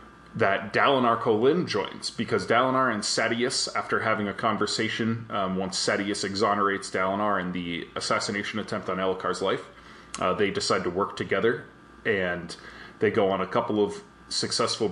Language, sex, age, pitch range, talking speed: English, male, 20-39, 95-115 Hz, 155 wpm